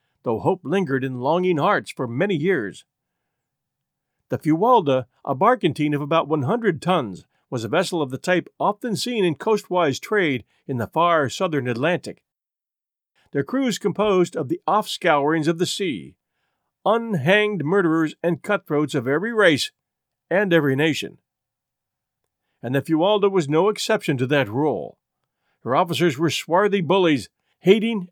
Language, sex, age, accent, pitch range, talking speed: English, male, 50-69, American, 150-200 Hz, 145 wpm